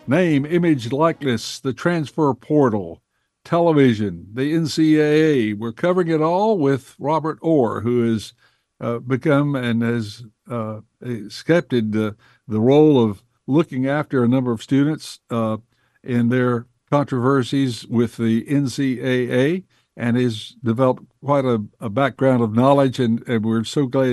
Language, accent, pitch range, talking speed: English, American, 120-140 Hz, 140 wpm